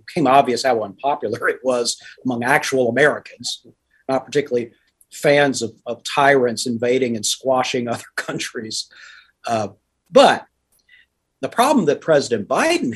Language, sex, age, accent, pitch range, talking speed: English, male, 50-69, American, 115-140 Hz, 125 wpm